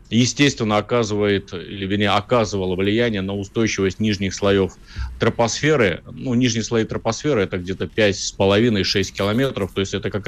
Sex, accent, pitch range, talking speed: male, native, 100-120 Hz, 115 wpm